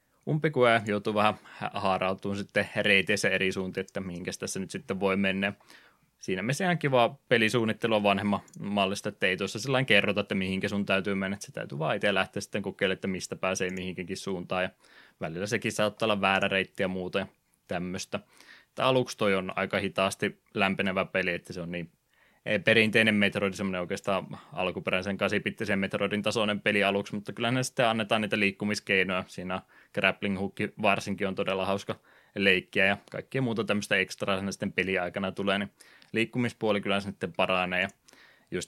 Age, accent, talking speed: 20-39, native, 165 wpm